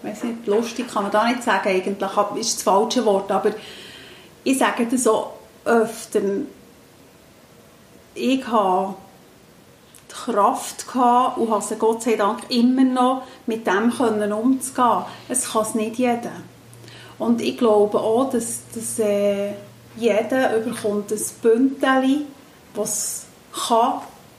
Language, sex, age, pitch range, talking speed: German, female, 30-49, 215-260 Hz, 135 wpm